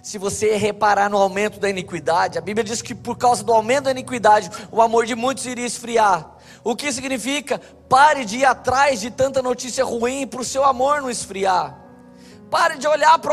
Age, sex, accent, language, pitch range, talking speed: 20-39, male, Brazilian, Portuguese, 200-270 Hz, 200 wpm